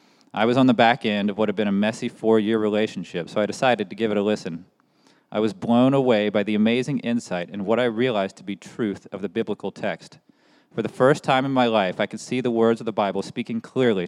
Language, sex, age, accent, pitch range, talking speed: English, male, 30-49, American, 105-120 Hz, 245 wpm